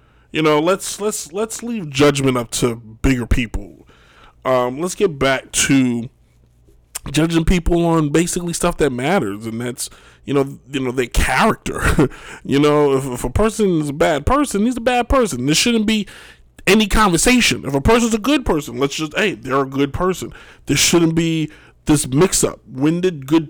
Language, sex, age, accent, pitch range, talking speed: English, male, 20-39, American, 130-220 Hz, 180 wpm